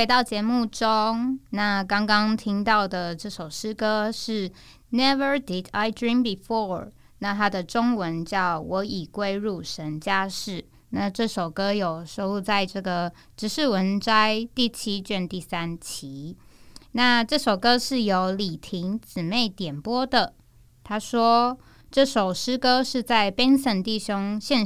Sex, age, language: female, 20-39, Chinese